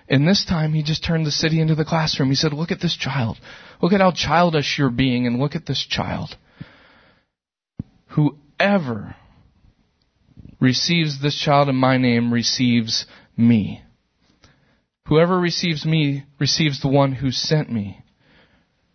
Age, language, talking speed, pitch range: 30-49, English, 145 wpm, 130-165 Hz